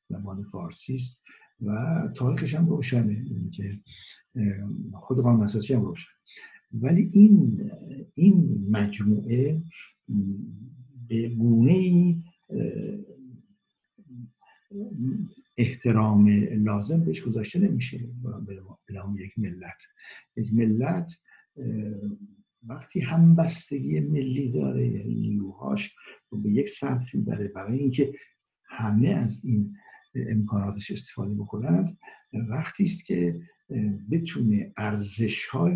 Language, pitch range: Persian, 105-165 Hz